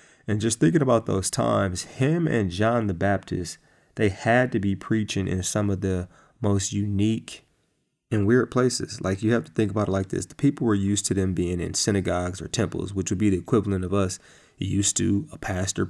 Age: 30-49